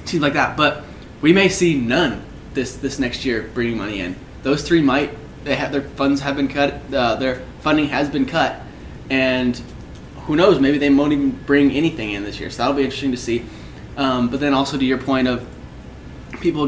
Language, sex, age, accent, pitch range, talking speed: English, male, 20-39, American, 125-145 Hz, 210 wpm